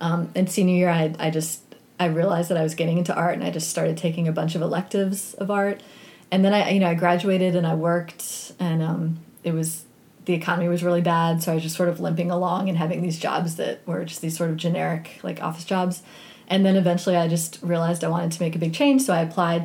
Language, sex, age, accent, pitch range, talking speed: English, female, 30-49, American, 170-190 Hz, 255 wpm